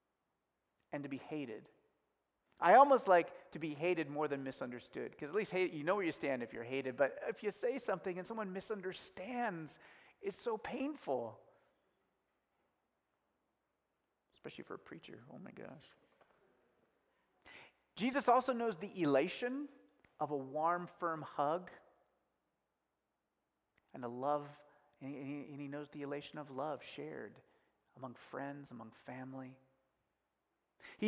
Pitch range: 140-195 Hz